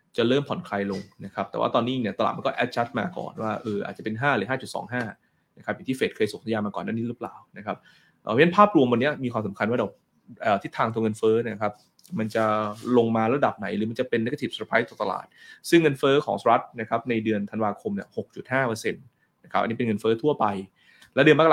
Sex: male